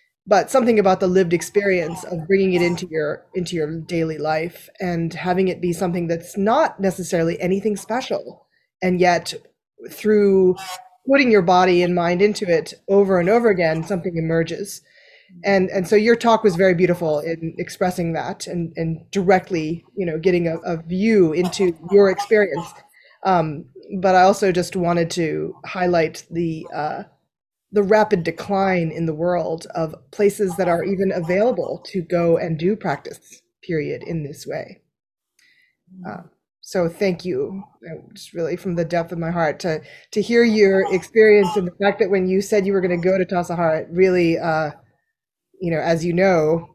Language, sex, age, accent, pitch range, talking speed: English, female, 20-39, American, 170-205 Hz, 170 wpm